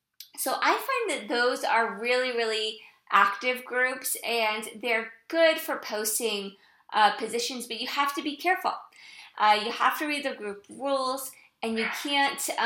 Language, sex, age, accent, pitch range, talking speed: English, female, 20-39, American, 205-265 Hz, 160 wpm